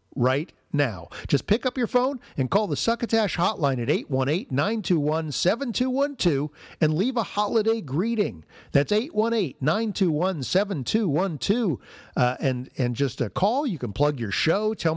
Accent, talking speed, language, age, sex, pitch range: American, 130 wpm, English, 50-69, male, 135-195 Hz